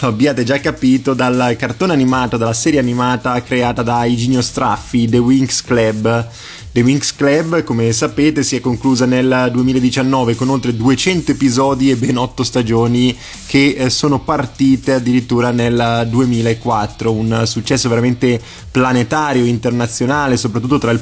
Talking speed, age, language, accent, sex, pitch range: 135 wpm, 20-39, Italian, native, male, 115-135 Hz